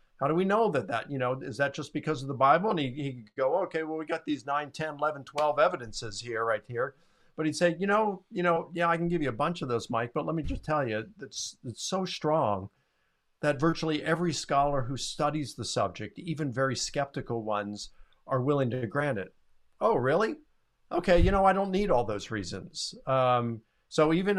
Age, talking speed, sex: 50-69, 220 wpm, male